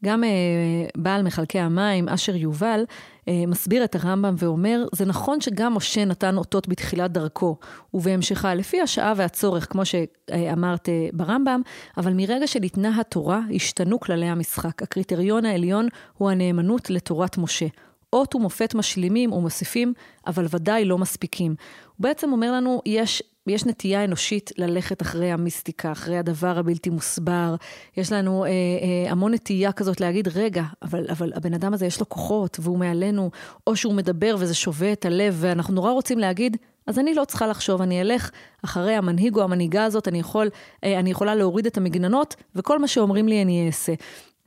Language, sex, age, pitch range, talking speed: Hebrew, female, 30-49, 175-220 Hz, 160 wpm